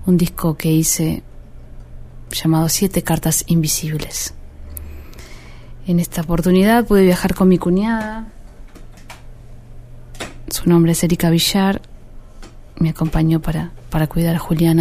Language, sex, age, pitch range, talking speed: Spanish, female, 20-39, 120-185 Hz, 115 wpm